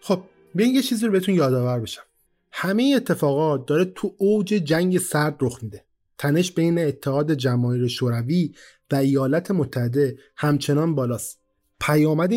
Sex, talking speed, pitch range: male, 135 wpm, 130-175 Hz